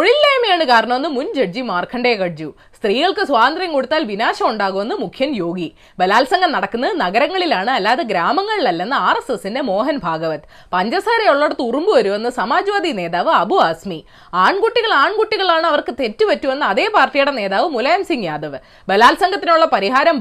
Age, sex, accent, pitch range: 20-39, female, native, 245-365 Hz